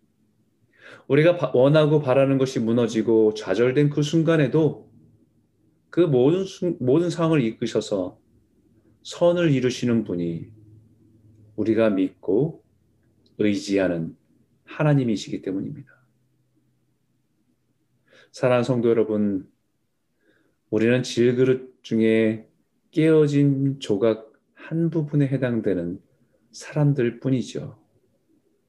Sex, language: male, Korean